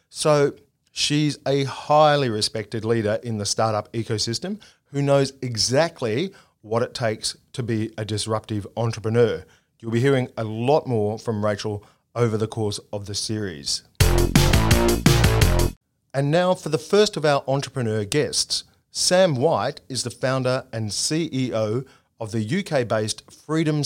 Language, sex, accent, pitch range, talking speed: English, male, Australian, 110-145 Hz, 140 wpm